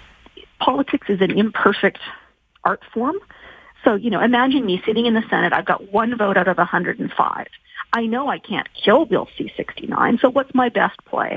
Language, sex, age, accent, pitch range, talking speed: English, female, 50-69, American, 205-270 Hz, 180 wpm